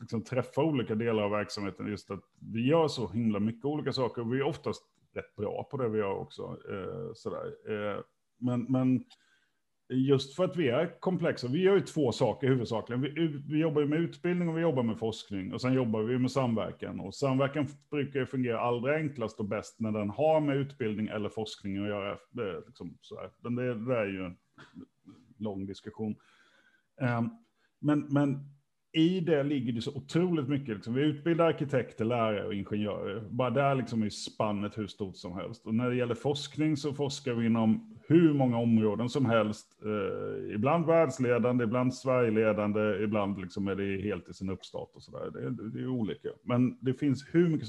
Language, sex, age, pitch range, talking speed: Swedish, male, 30-49, 110-145 Hz, 190 wpm